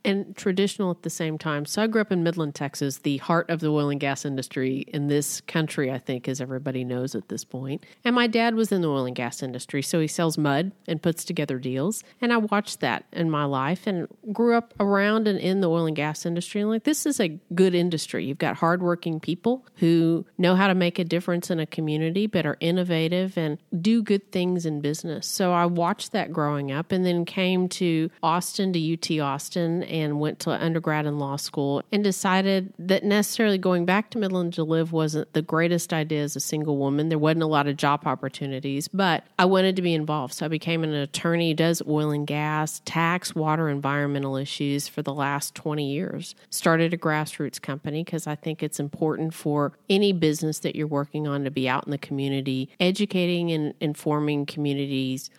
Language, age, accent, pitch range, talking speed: English, 40-59, American, 145-185 Hz, 210 wpm